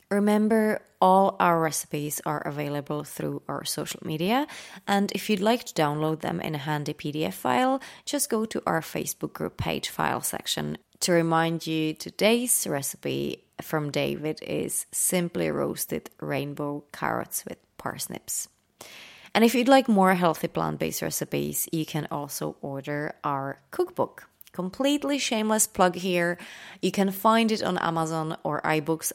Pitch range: 150-215 Hz